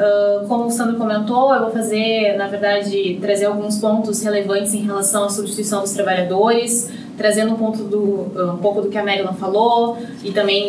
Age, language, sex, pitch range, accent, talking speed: 20-39, Portuguese, female, 195-220 Hz, Brazilian, 180 wpm